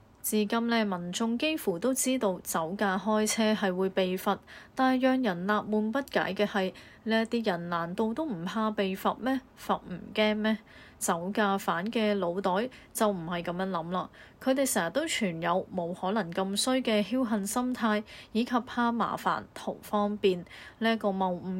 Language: Chinese